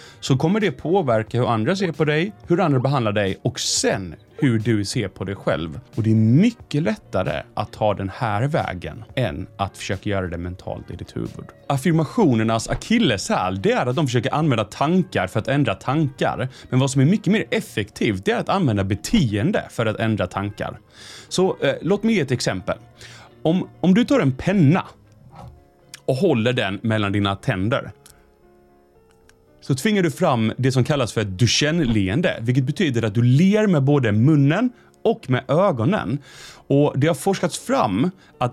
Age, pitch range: 30-49, 105-155 Hz